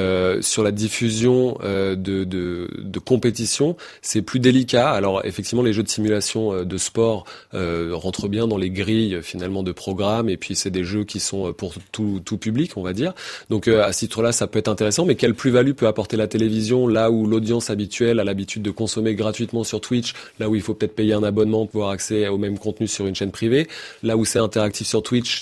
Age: 20-39